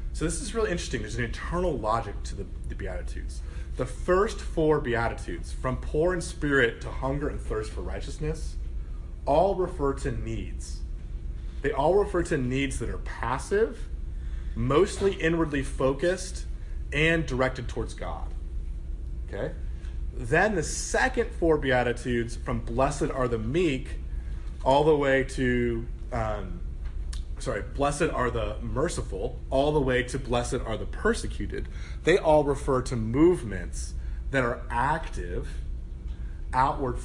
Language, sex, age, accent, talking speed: English, male, 30-49, American, 135 wpm